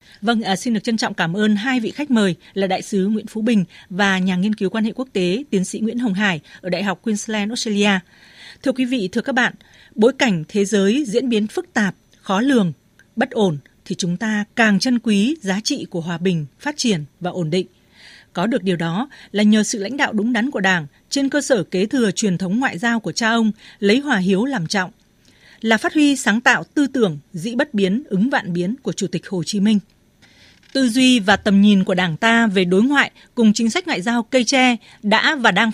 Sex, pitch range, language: female, 190-240 Hz, Vietnamese